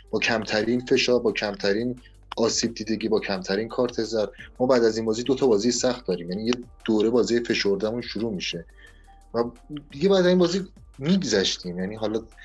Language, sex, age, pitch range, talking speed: Persian, male, 30-49, 105-125 Hz, 170 wpm